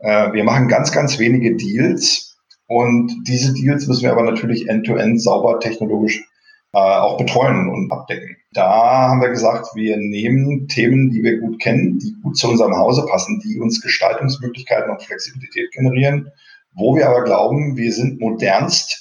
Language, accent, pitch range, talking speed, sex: German, German, 110-130 Hz, 160 wpm, male